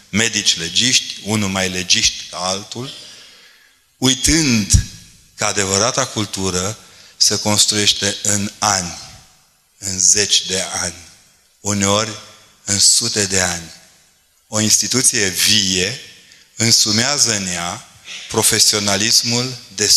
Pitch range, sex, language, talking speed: 95-115 Hz, male, Romanian, 95 wpm